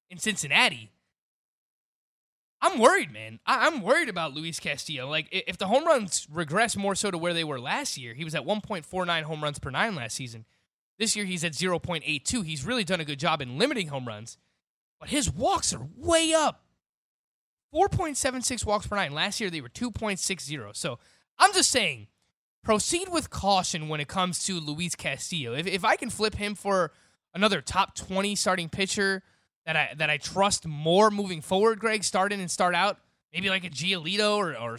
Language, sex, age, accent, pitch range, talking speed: English, male, 20-39, American, 155-220 Hz, 190 wpm